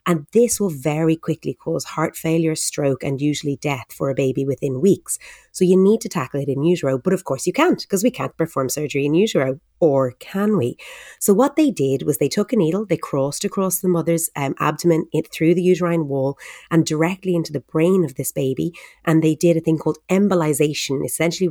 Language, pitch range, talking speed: English, 140-185 Hz, 215 wpm